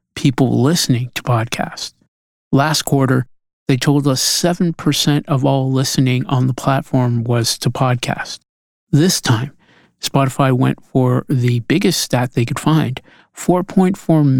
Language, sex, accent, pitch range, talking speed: English, male, American, 125-150 Hz, 130 wpm